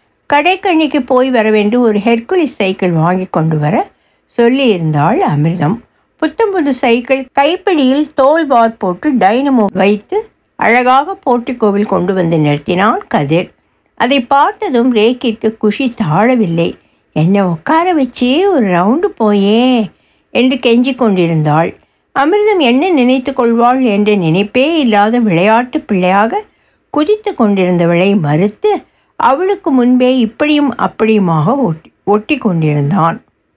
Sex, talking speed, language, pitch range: female, 100 wpm, Tamil, 200-275 Hz